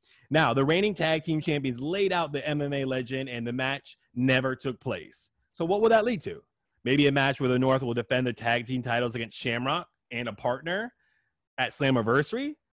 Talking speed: 200 wpm